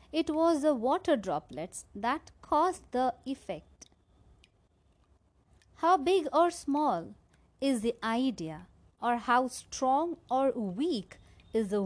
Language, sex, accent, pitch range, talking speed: Hindi, female, native, 220-315 Hz, 115 wpm